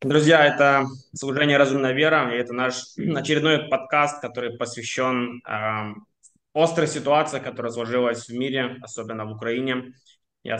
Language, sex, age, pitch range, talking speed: Russian, male, 20-39, 120-135 Hz, 130 wpm